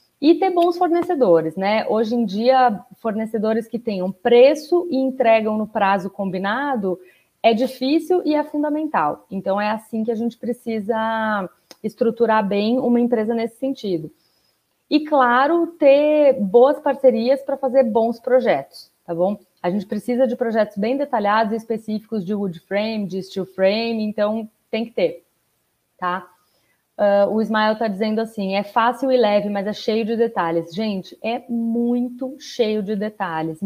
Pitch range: 200-245 Hz